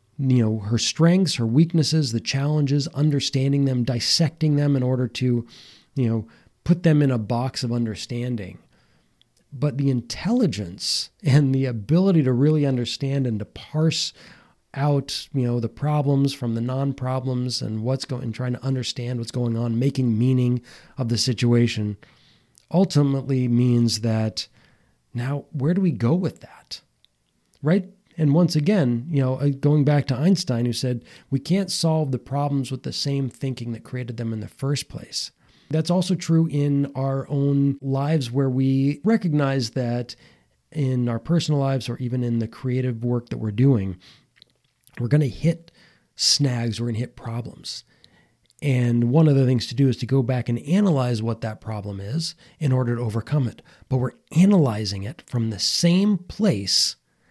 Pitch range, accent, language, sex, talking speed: 120-145 Hz, American, English, male, 165 wpm